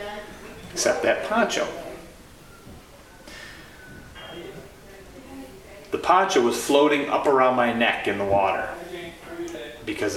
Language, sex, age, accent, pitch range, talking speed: English, male, 30-49, American, 100-140 Hz, 90 wpm